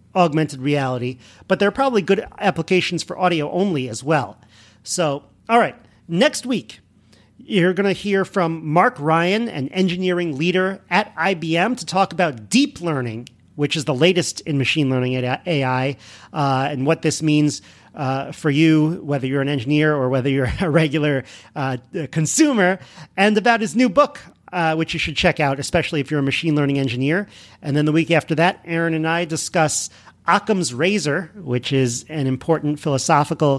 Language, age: English, 40-59